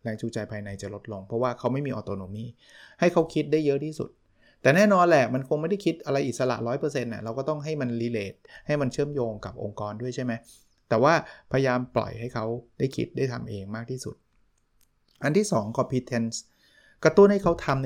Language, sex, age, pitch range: Thai, male, 20-39, 115-145 Hz